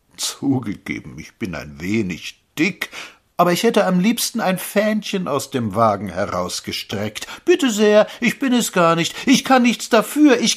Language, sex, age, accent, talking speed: German, male, 60-79, German, 165 wpm